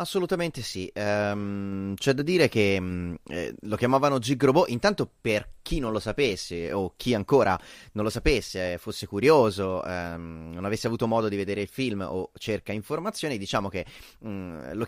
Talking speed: 175 wpm